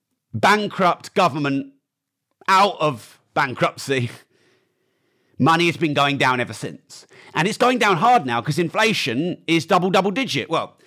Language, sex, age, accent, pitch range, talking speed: English, male, 40-59, British, 125-185 Hz, 140 wpm